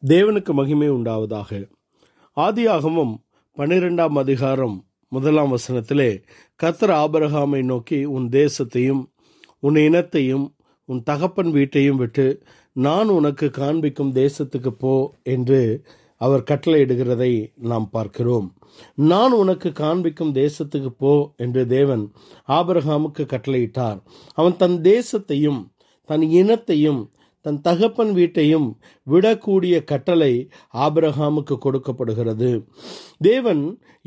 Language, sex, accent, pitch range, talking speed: Tamil, male, native, 130-170 Hz, 90 wpm